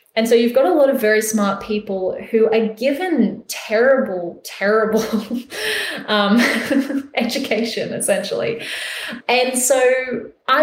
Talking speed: 120 wpm